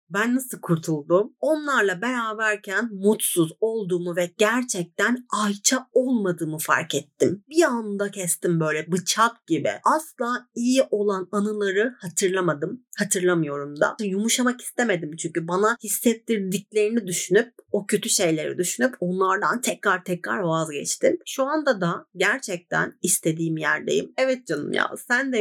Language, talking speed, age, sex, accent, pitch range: Turkish, 120 wpm, 30-49, female, native, 180-250 Hz